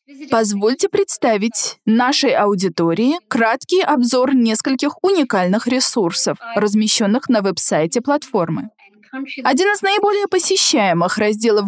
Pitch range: 205-275 Hz